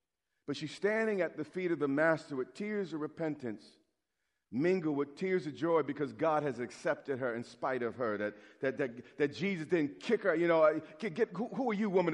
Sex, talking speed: male, 215 wpm